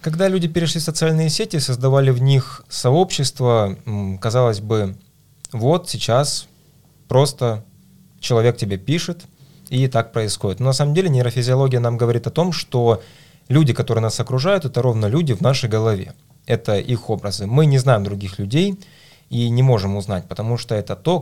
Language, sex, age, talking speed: Russian, male, 20-39, 160 wpm